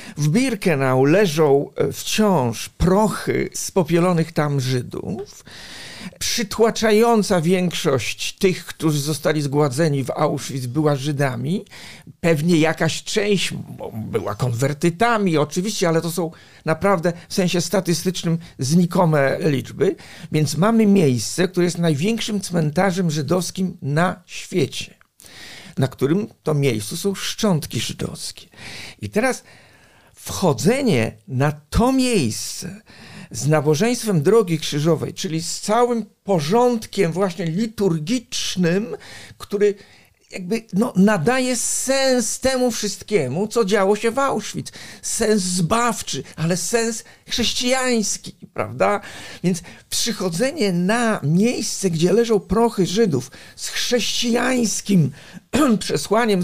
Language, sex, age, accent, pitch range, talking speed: Polish, male, 50-69, native, 155-215 Hz, 100 wpm